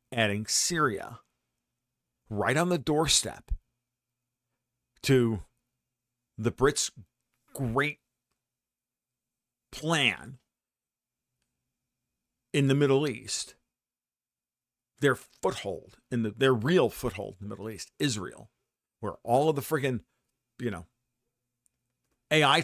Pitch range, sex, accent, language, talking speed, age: 110-125 Hz, male, American, English, 95 wpm, 50-69